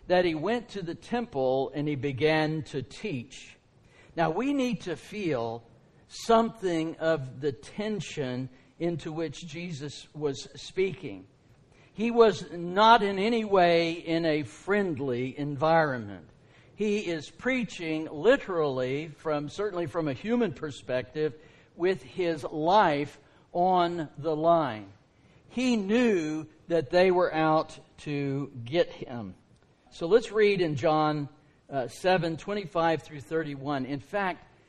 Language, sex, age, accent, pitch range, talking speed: English, male, 60-79, American, 140-180 Hz, 125 wpm